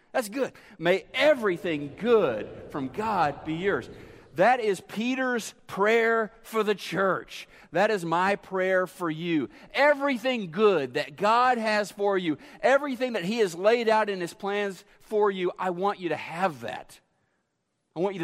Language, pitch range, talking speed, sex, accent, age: English, 165-220 Hz, 160 wpm, male, American, 40-59